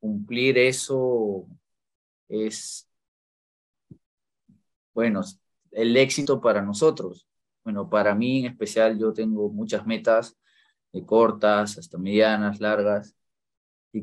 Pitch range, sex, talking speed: 100-115 Hz, male, 100 wpm